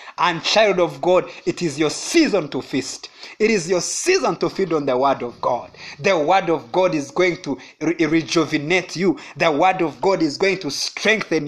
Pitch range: 165-240 Hz